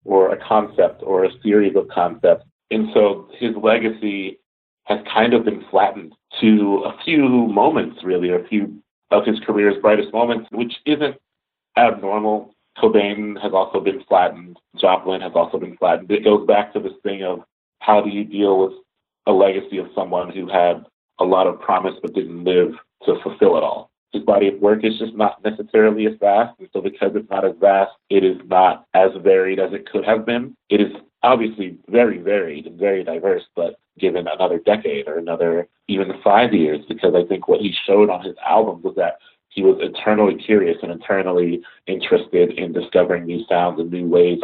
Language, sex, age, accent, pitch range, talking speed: English, male, 30-49, American, 95-115 Hz, 190 wpm